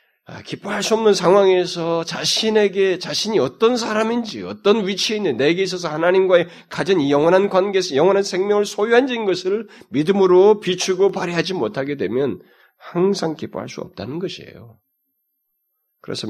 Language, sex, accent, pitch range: Korean, male, native, 125-190 Hz